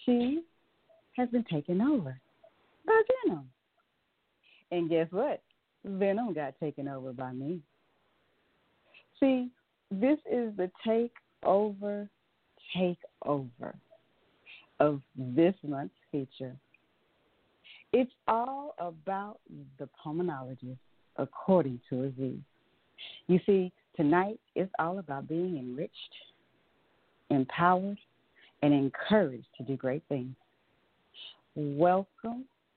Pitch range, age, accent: 145-220 Hz, 40-59, American